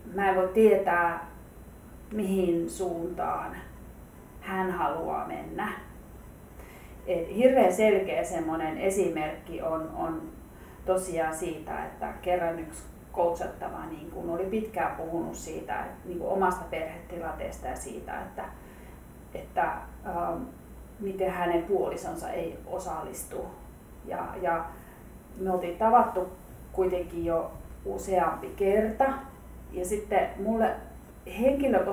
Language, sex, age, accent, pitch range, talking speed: Finnish, female, 30-49, native, 170-210 Hz, 100 wpm